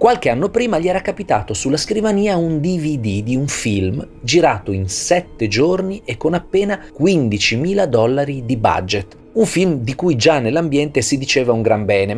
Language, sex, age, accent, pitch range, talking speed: Italian, male, 30-49, native, 105-170 Hz, 175 wpm